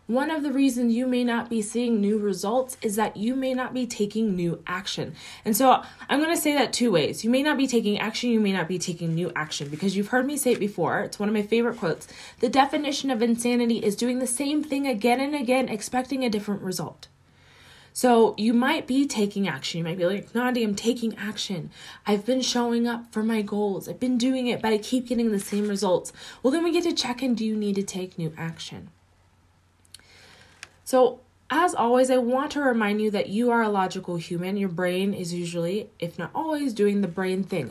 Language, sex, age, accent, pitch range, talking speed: English, female, 20-39, American, 185-250 Hz, 225 wpm